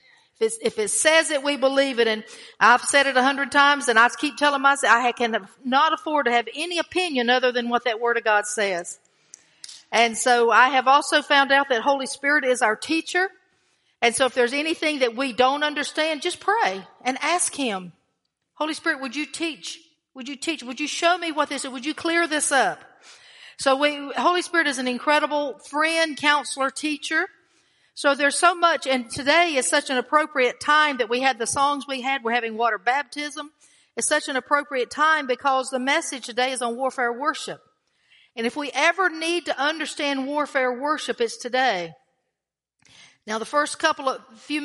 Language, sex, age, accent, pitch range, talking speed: English, female, 50-69, American, 250-300 Hz, 195 wpm